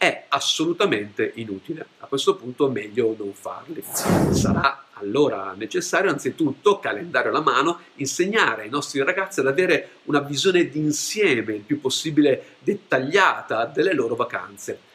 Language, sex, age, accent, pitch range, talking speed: Italian, male, 50-69, native, 120-190 Hz, 130 wpm